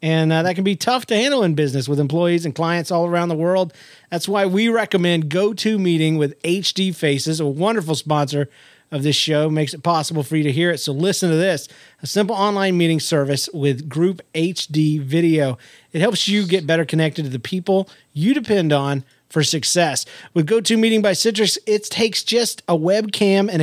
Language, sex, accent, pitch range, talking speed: English, male, American, 150-205 Hz, 195 wpm